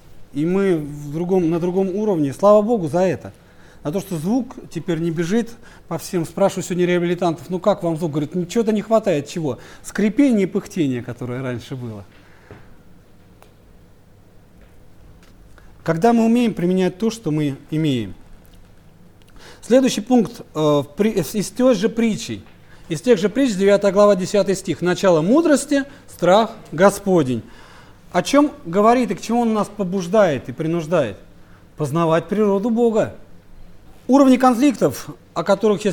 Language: Russian